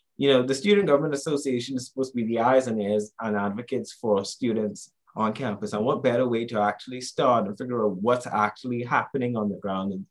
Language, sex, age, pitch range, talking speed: English, male, 20-39, 105-135 Hz, 220 wpm